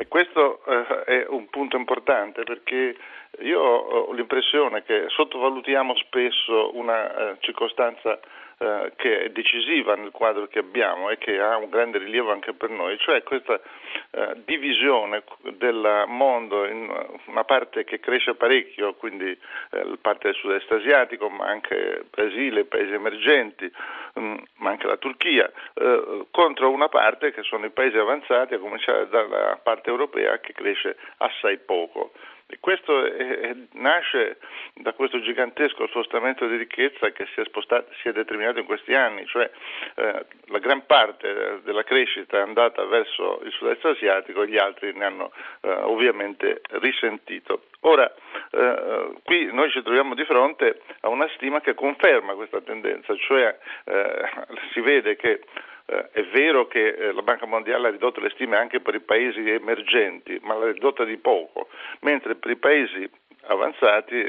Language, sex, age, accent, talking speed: Italian, male, 50-69, native, 150 wpm